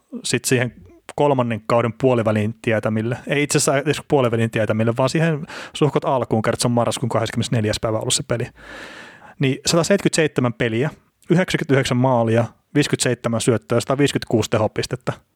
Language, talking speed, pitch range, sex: Finnish, 120 wpm, 110-135 Hz, male